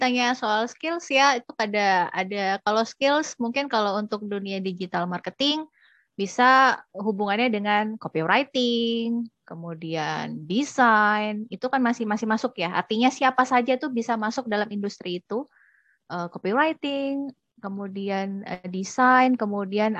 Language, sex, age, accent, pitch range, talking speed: Indonesian, female, 20-39, native, 200-245 Hz, 120 wpm